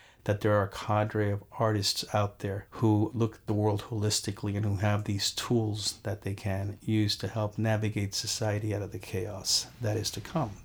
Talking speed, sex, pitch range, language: 205 wpm, male, 100-115 Hz, English